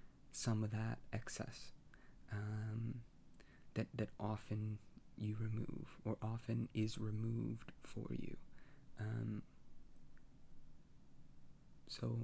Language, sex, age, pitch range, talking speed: English, male, 20-39, 110-120 Hz, 90 wpm